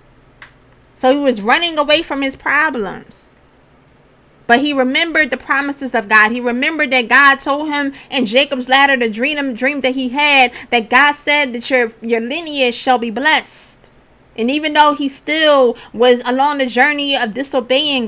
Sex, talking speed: female, 170 wpm